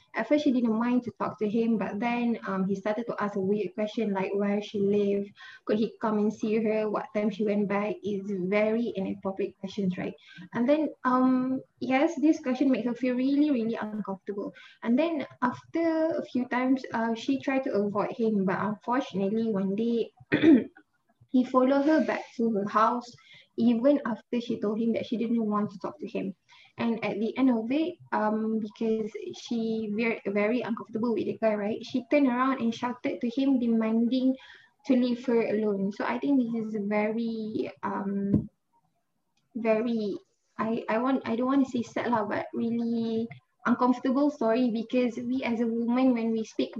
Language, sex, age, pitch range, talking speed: English, female, 20-39, 210-255 Hz, 185 wpm